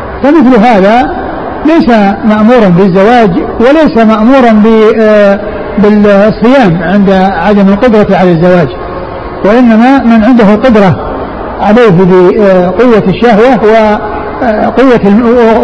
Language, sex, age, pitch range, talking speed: Arabic, male, 60-79, 195-230 Hz, 80 wpm